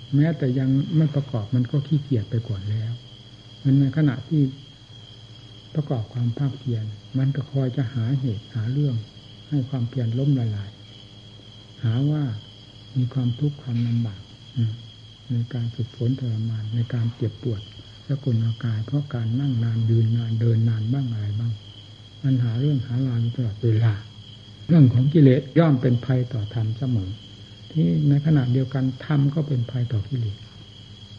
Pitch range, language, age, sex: 110-135 Hz, Thai, 60-79, male